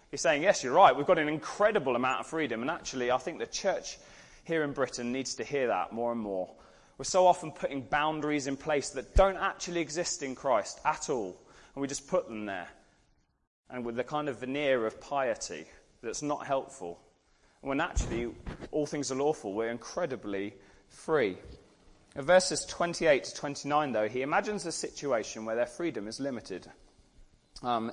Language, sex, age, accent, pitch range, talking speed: English, male, 30-49, British, 110-150 Hz, 185 wpm